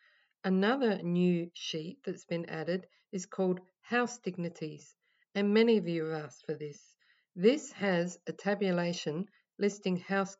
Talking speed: 140 wpm